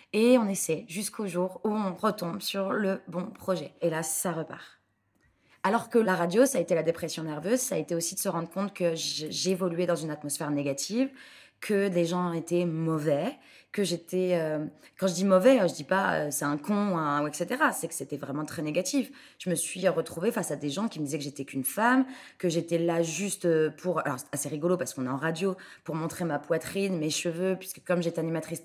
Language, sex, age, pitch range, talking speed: French, female, 20-39, 165-210 Hz, 230 wpm